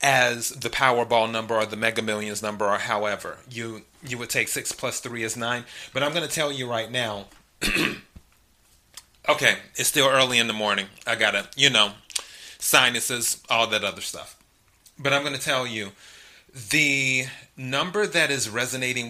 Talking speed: 175 wpm